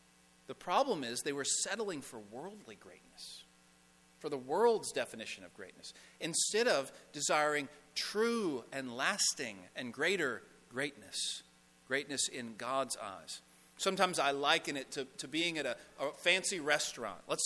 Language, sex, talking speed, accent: English, male, 140 wpm, American